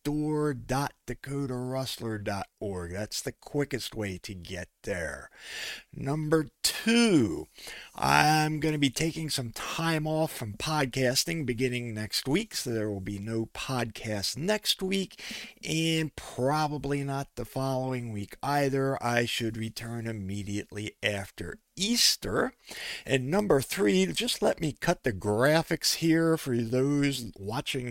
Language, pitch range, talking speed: English, 110-155 Hz, 125 wpm